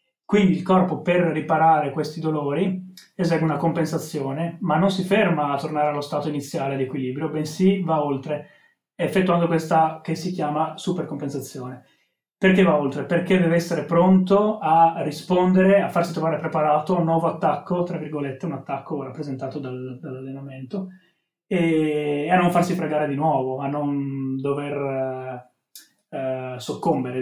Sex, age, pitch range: male, 30-49, 140-175 Hz